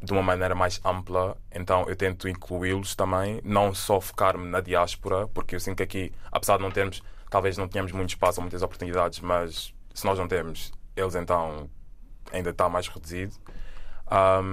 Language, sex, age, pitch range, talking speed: Portuguese, male, 20-39, 90-100 Hz, 180 wpm